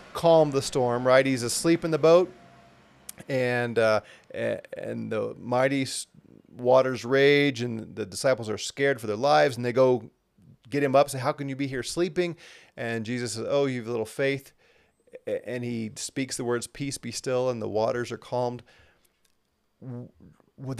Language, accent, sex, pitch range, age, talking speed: English, American, male, 115-150 Hz, 40-59, 175 wpm